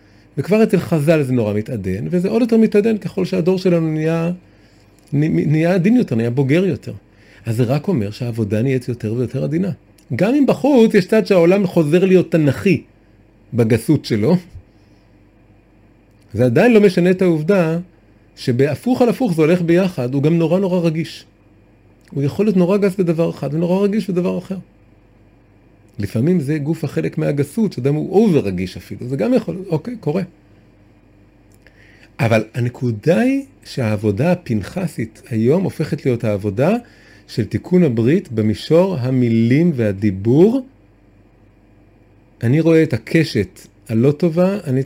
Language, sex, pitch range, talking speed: Hebrew, male, 110-180 Hz, 140 wpm